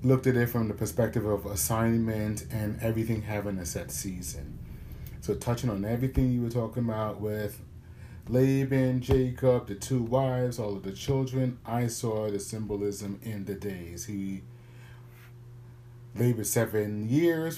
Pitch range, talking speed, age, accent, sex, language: 105-125 Hz, 145 wpm, 30-49, American, male, English